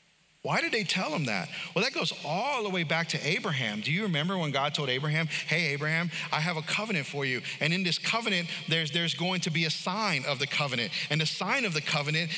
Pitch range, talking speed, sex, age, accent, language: 160-220 Hz, 240 wpm, male, 40-59, American, English